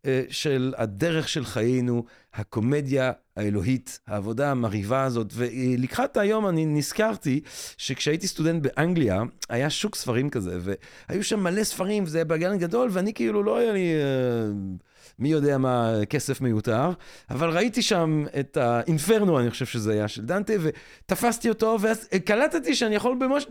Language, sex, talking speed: Hebrew, male, 145 wpm